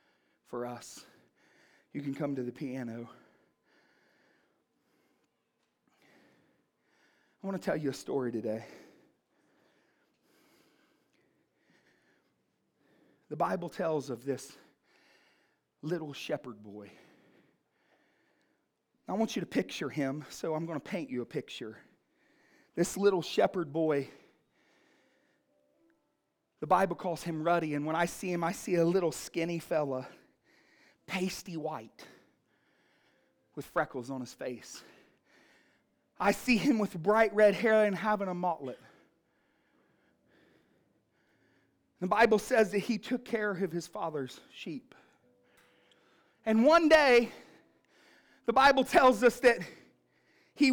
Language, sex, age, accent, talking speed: English, male, 40-59, American, 115 wpm